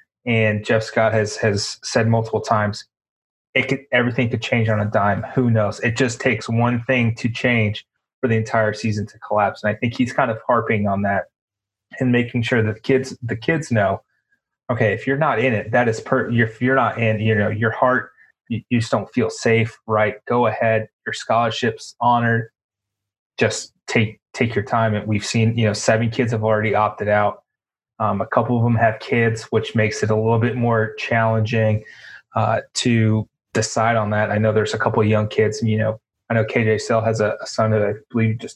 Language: English